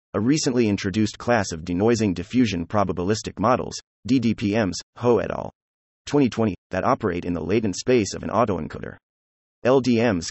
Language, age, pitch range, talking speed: English, 30-49, 90-120 Hz, 140 wpm